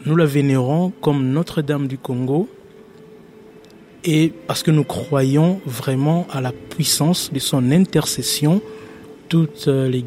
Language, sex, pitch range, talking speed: Dutch, male, 130-155 Hz, 125 wpm